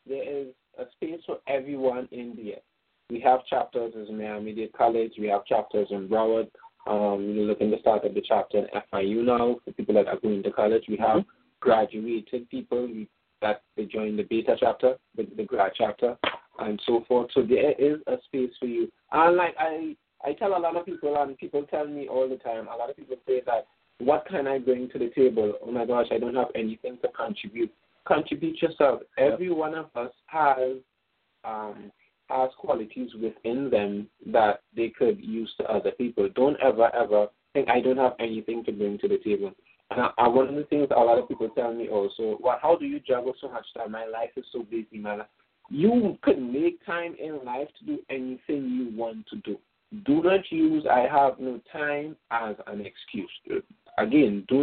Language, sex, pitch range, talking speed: English, male, 115-155 Hz, 205 wpm